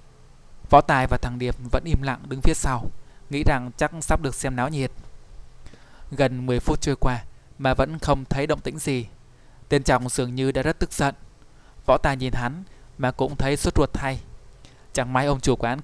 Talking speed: 205 wpm